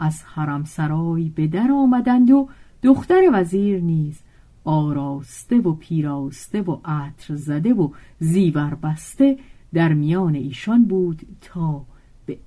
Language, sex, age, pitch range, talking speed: Persian, female, 50-69, 145-190 Hz, 120 wpm